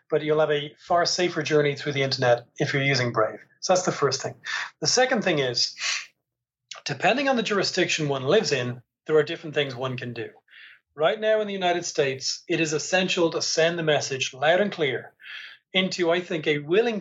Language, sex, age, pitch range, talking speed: English, male, 40-59, 135-170 Hz, 205 wpm